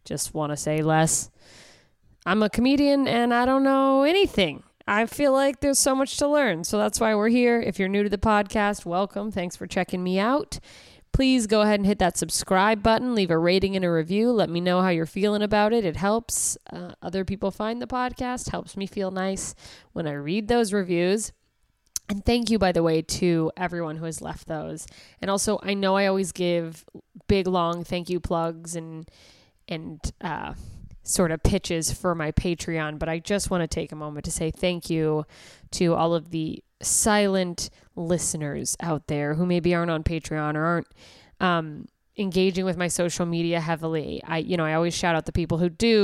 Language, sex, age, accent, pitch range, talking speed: English, female, 20-39, American, 160-205 Hz, 200 wpm